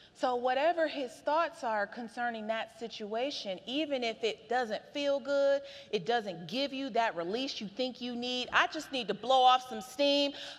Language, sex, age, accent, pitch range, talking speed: English, female, 30-49, American, 235-315 Hz, 180 wpm